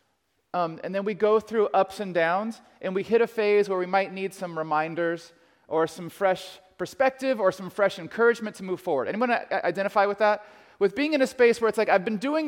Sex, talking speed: male, 220 wpm